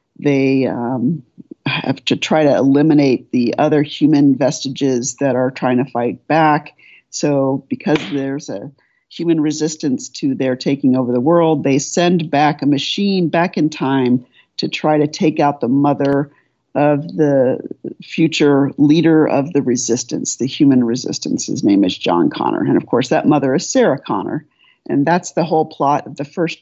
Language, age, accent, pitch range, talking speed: English, 50-69, American, 135-160 Hz, 170 wpm